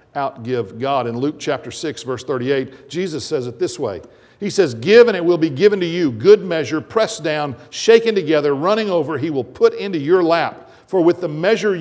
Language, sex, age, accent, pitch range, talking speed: English, male, 50-69, American, 120-170 Hz, 210 wpm